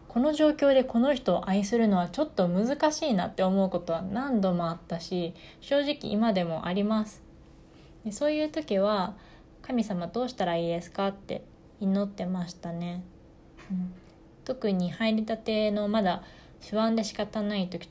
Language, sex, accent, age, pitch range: Japanese, female, native, 20-39, 180-215 Hz